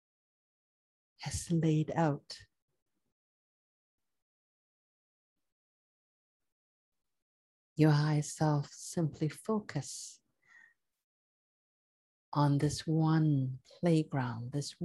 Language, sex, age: English, female, 60-79